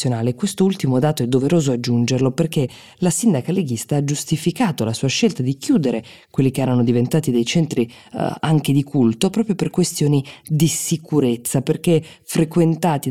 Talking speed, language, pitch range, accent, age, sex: 150 wpm, Italian, 125-160 Hz, native, 20-39, female